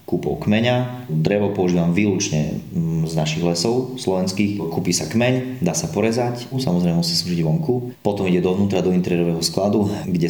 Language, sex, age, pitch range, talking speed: Slovak, male, 30-49, 80-105 Hz, 155 wpm